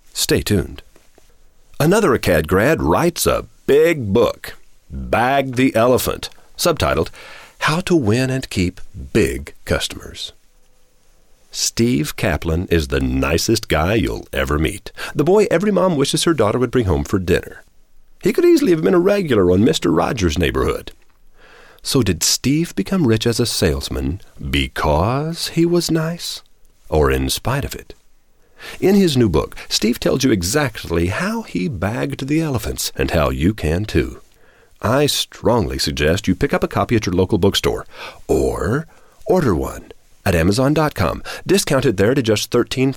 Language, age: English, 40-59